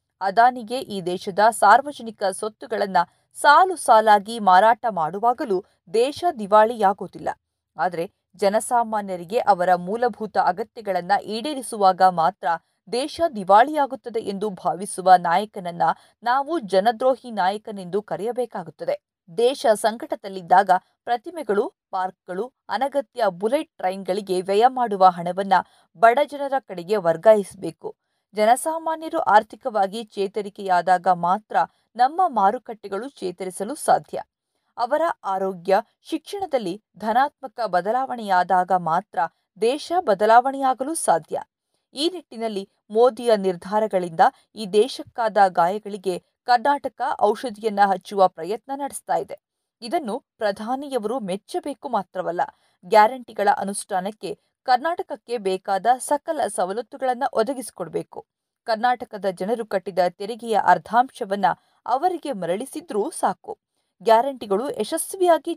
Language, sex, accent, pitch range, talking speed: Kannada, female, native, 190-260 Hz, 80 wpm